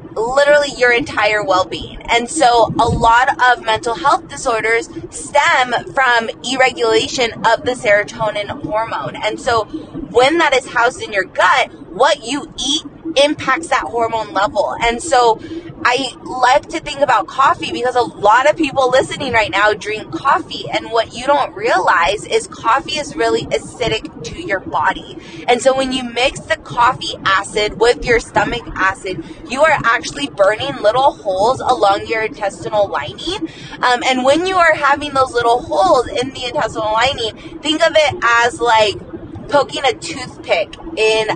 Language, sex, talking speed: English, female, 160 wpm